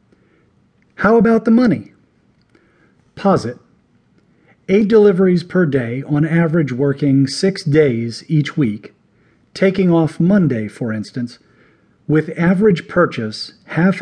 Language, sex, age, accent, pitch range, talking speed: English, male, 40-59, American, 135-180 Hz, 105 wpm